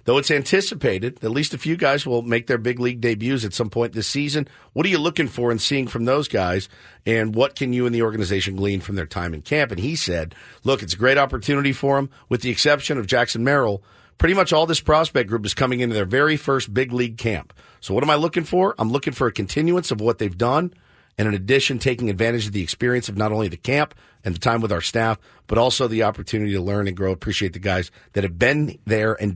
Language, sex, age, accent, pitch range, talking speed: English, male, 50-69, American, 110-140 Hz, 250 wpm